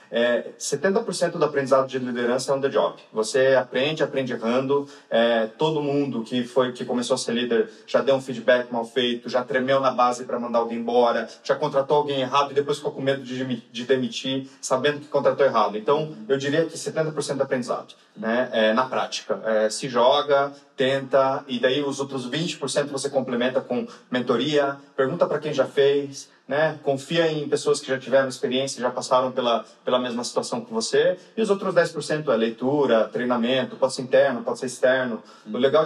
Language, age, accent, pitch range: Portuguese, 30-49, Brazilian, 125-145 Hz